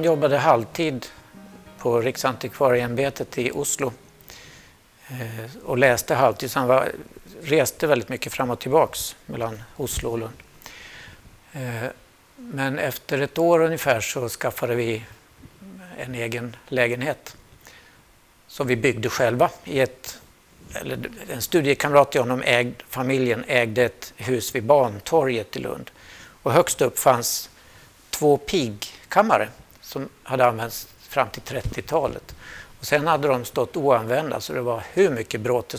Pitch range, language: 120-145 Hz, Swedish